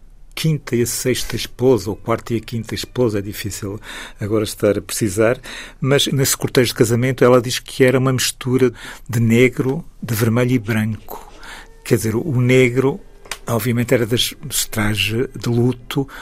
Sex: male